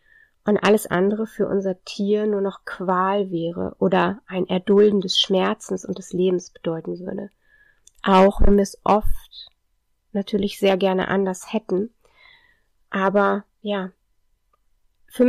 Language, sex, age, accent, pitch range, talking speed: German, female, 30-49, German, 185-215 Hz, 130 wpm